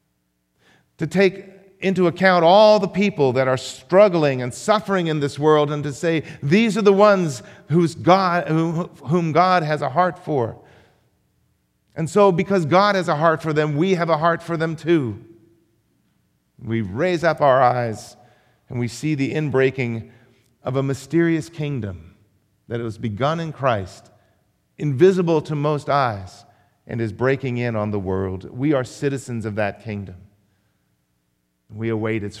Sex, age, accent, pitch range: male, 50-69, American, 105-155 Hz